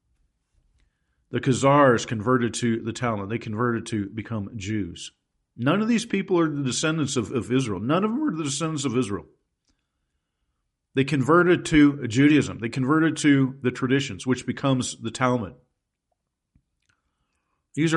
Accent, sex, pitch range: American, male, 115-145 Hz